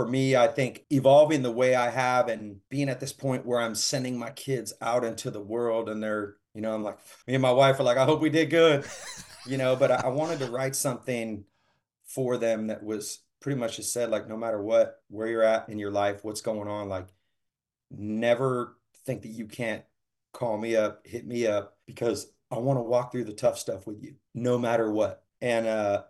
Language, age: English, 40-59